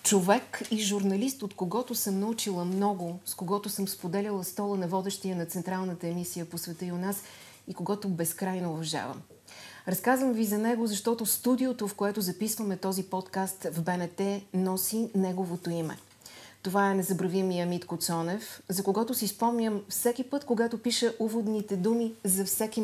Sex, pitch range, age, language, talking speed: female, 175-220 Hz, 40-59, Bulgarian, 160 wpm